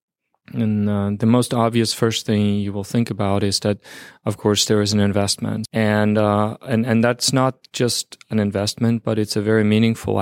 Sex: male